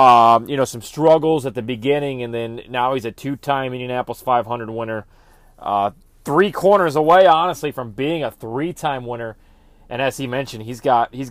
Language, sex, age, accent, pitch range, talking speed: English, male, 30-49, American, 115-155 Hz, 180 wpm